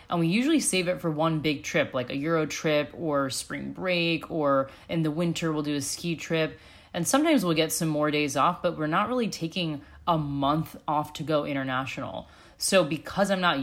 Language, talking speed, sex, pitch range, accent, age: English, 210 wpm, female, 145-170 Hz, American, 20-39